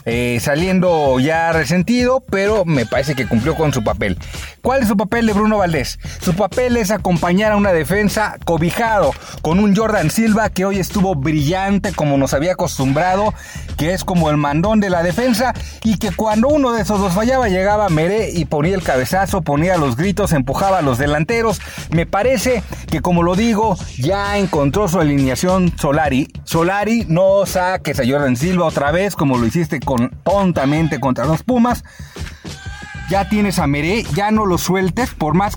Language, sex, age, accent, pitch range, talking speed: Spanish, male, 40-59, Mexican, 145-195 Hz, 175 wpm